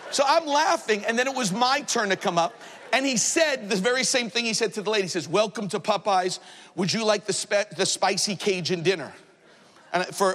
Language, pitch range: English, 195-285 Hz